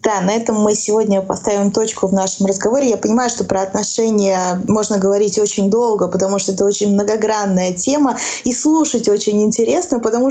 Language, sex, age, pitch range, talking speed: Russian, female, 20-39, 195-240 Hz, 175 wpm